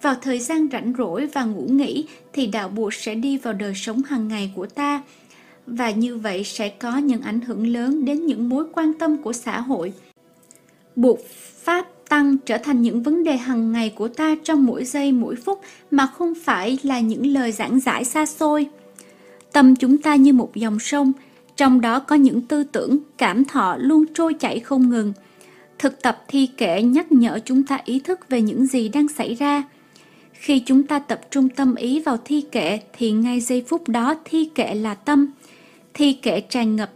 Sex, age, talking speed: female, 20-39, 200 wpm